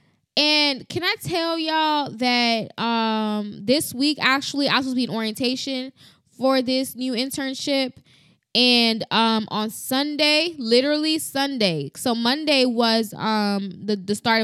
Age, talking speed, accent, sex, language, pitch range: 10-29, 140 wpm, American, female, English, 220-290 Hz